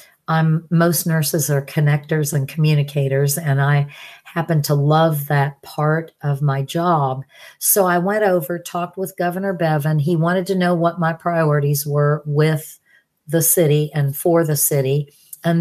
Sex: female